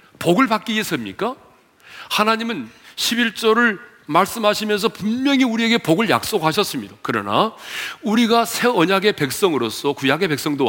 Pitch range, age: 120-200 Hz, 40-59